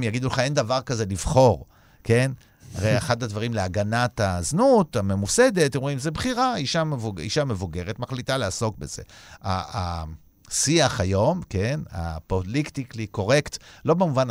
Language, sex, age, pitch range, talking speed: Hebrew, male, 50-69, 95-130 Hz, 130 wpm